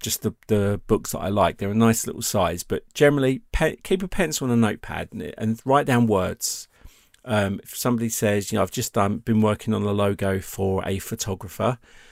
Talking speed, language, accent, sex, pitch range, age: 220 wpm, English, British, male, 100-120 Hz, 40-59